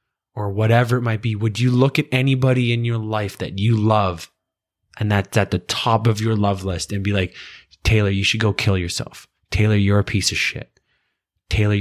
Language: English